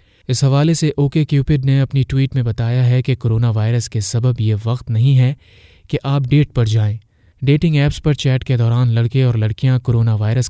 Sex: male